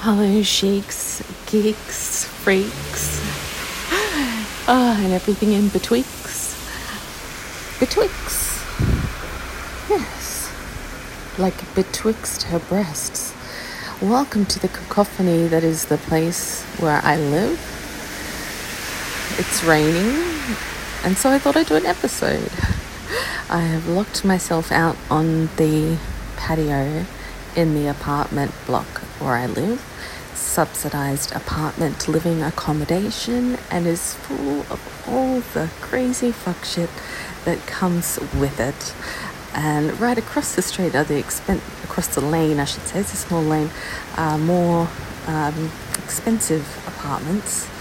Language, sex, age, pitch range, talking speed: English, female, 40-59, 160-215 Hz, 115 wpm